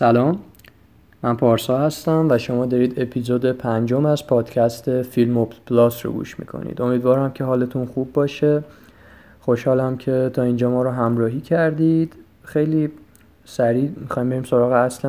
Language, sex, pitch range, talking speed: Persian, male, 120-130 Hz, 145 wpm